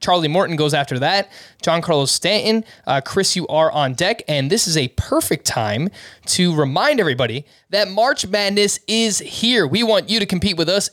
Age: 20-39